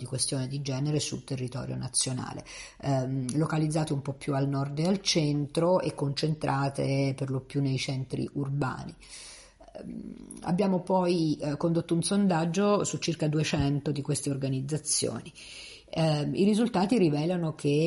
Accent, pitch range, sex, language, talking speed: Italian, 135-165 Hz, female, Spanish, 145 wpm